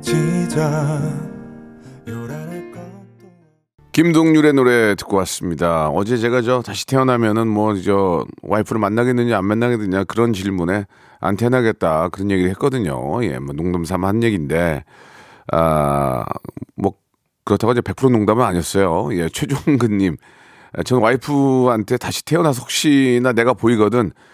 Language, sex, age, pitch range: Korean, male, 40-59, 95-135 Hz